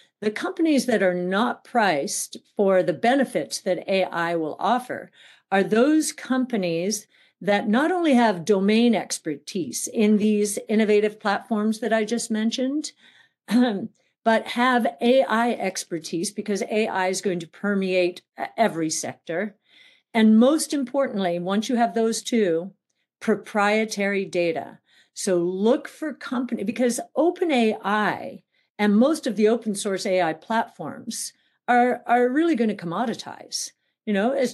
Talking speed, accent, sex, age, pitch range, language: 130 wpm, American, female, 50-69, 195-245 Hz, English